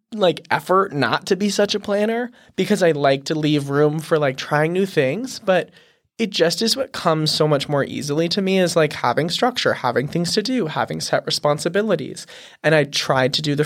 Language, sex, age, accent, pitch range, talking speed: English, male, 20-39, American, 140-180 Hz, 210 wpm